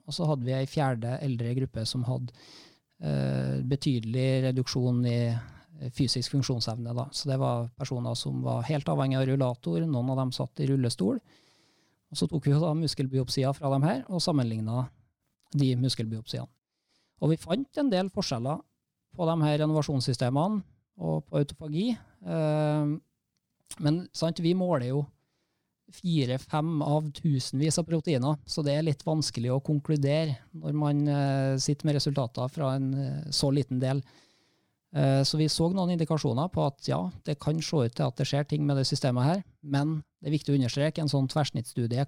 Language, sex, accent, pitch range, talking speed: English, male, Norwegian, 130-155 Hz, 165 wpm